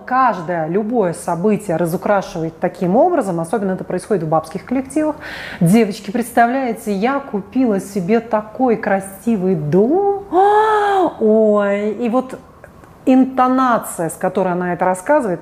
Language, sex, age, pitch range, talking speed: Russian, female, 30-49, 185-245 Hz, 115 wpm